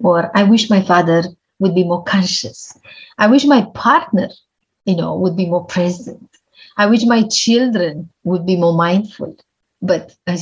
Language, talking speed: English, 165 wpm